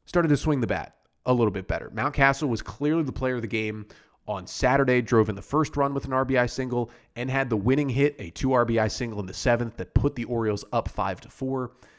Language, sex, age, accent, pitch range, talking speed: English, male, 30-49, American, 110-145 Hz, 240 wpm